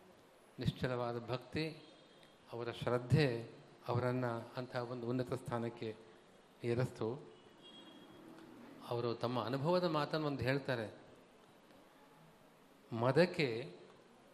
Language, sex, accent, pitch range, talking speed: Kannada, male, native, 120-150 Hz, 70 wpm